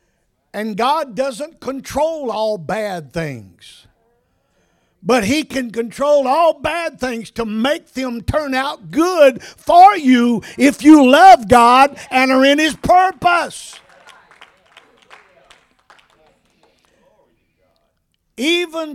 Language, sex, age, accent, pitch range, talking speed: English, male, 50-69, American, 210-290 Hz, 100 wpm